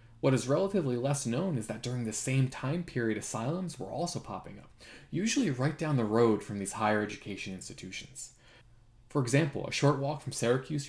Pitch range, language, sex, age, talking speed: 110-135 Hz, English, male, 20-39, 185 wpm